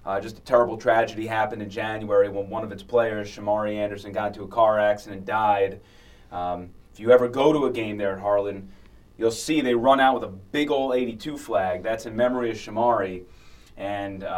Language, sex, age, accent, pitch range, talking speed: English, male, 30-49, American, 105-125 Hz, 210 wpm